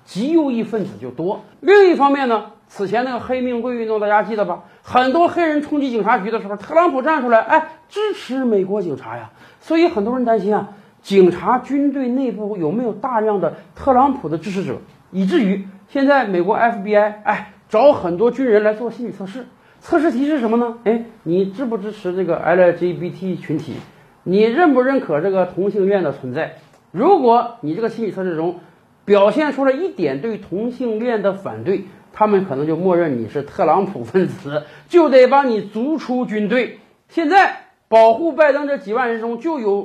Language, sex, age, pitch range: Chinese, male, 50-69, 190-260 Hz